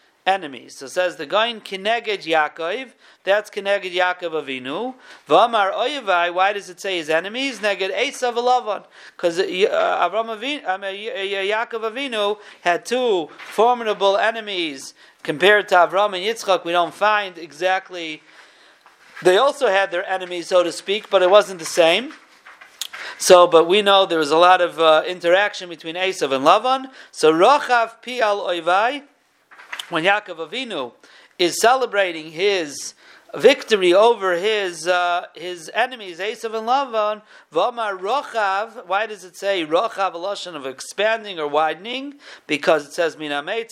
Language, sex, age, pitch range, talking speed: English, male, 40-59, 175-230 Hz, 140 wpm